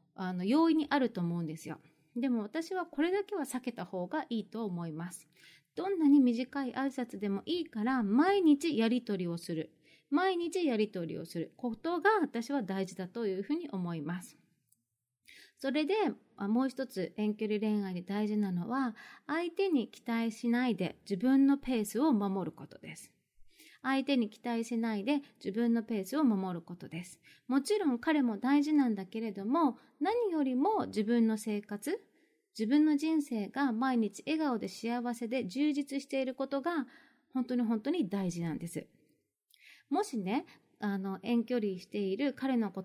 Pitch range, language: 200-285 Hz, Japanese